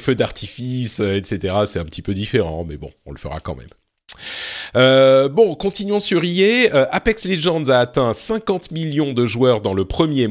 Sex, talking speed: male, 185 wpm